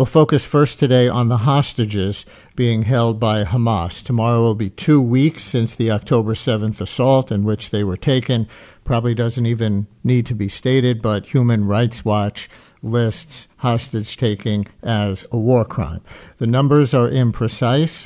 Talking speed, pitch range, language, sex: 160 wpm, 110-130 Hz, English, male